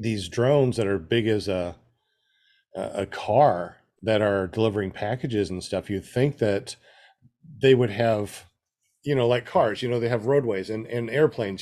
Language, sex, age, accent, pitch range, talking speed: English, male, 40-59, American, 100-130 Hz, 170 wpm